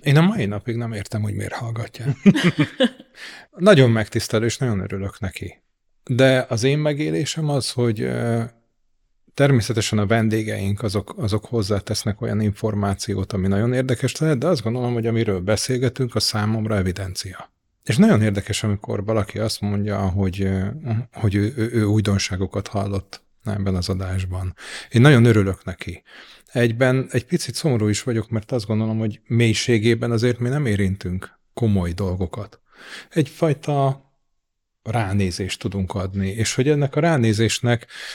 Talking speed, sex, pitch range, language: 140 wpm, male, 100-125 Hz, Hungarian